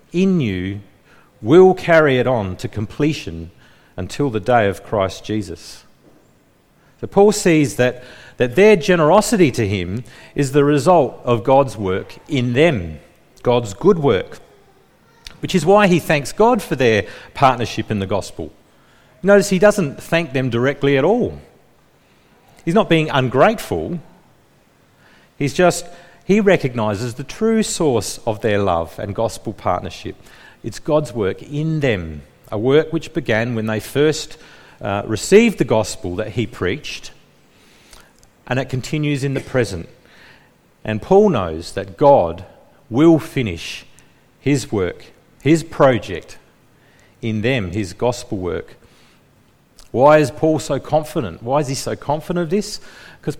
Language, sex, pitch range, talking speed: English, male, 110-160 Hz, 140 wpm